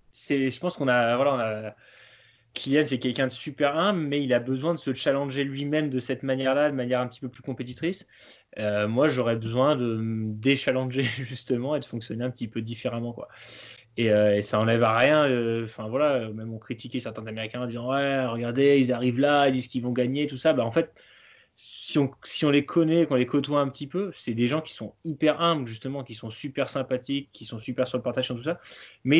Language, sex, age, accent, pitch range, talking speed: French, male, 20-39, French, 115-145 Hz, 235 wpm